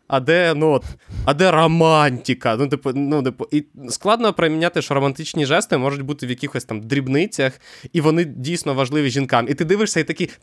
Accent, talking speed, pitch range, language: native, 185 wpm, 125-160 Hz, Ukrainian